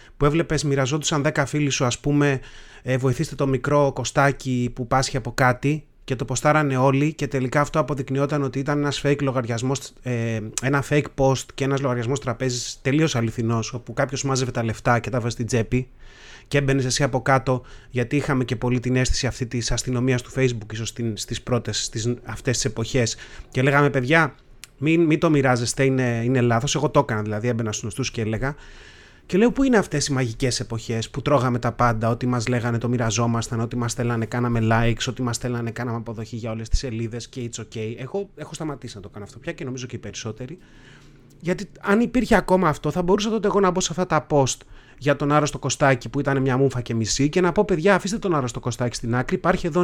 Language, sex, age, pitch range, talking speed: Greek, male, 30-49, 120-150 Hz, 210 wpm